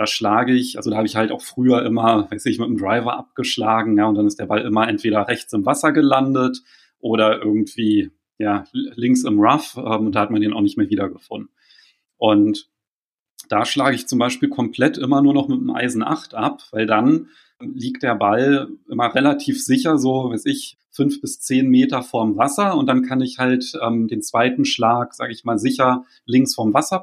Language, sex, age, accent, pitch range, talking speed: German, male, 30-49, German, 115-160 Hz, 205 wpm